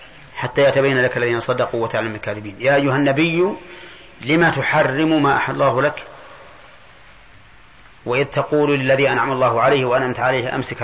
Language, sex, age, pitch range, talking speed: Arabic, male, 40-59, 130-155 Hz, 145 wpm